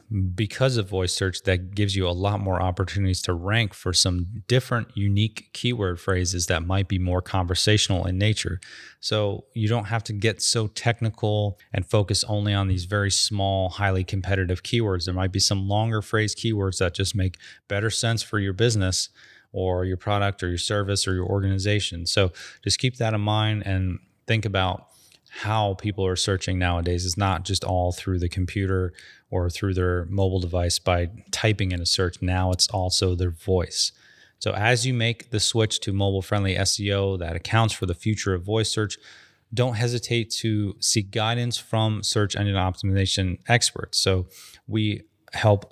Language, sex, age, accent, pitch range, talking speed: English, male, 30-49, American, 95-105 Hz, 175 wpm